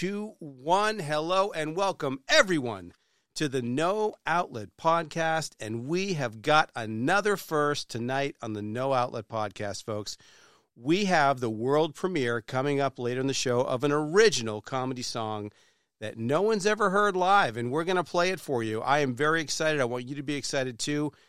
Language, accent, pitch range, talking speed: English, American, 125-165 Hz, 180 wpm